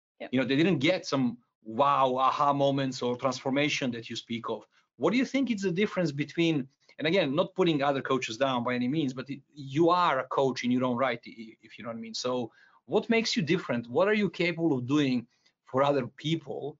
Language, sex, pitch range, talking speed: English, male, 130-165 Hz, 220 wpm